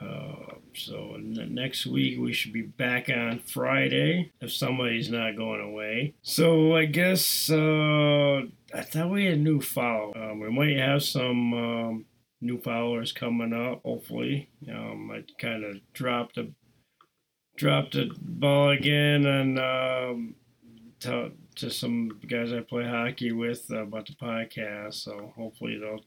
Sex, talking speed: male, 145 wpm